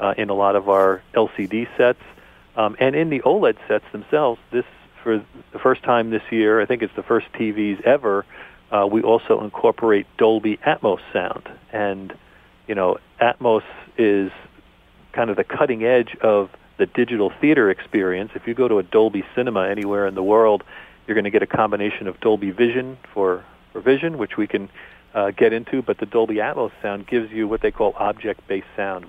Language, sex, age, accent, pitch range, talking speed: English, male, 40-59, American, 100-115 Hz, 190 wpm